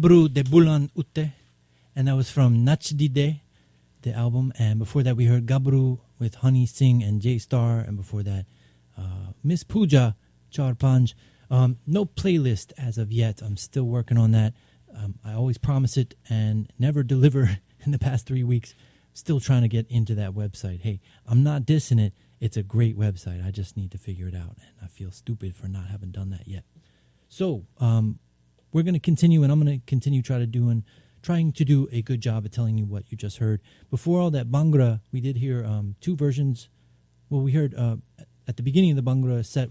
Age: 30-49